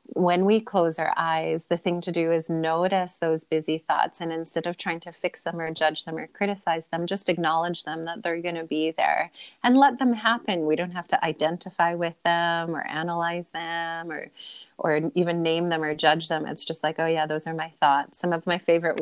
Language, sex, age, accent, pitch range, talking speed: English, female, 30-49, American, 160-175 Hz, 225 wpm